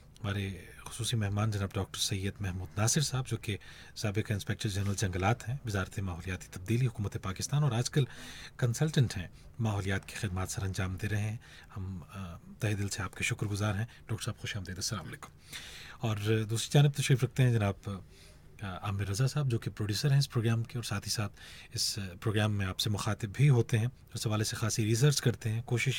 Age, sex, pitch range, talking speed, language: 30-49, male, 100-130 Hz, 190 wpm, Hindi